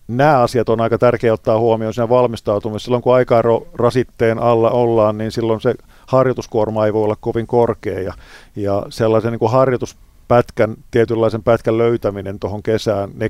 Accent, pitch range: native, 105-120 Hz